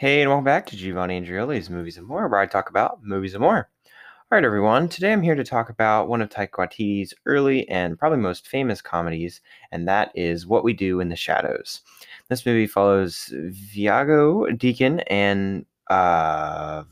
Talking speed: 180 wpm